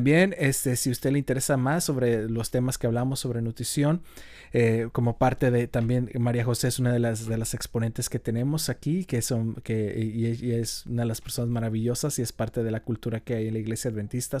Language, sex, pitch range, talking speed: Spanish, male, 115-135 Hz, 215 wpm